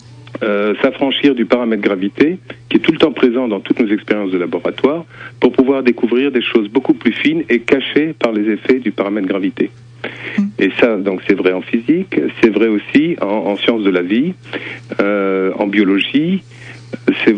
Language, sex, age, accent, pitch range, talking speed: French, male, 50-69, French, 105-130 Hz, 185 wpm